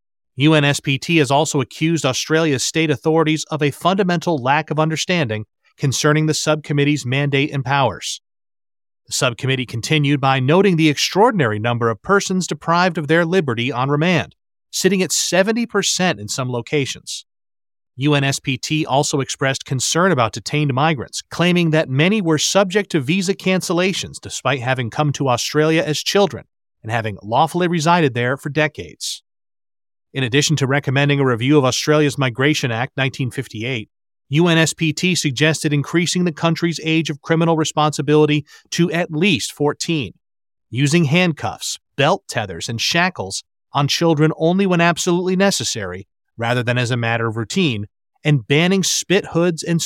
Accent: American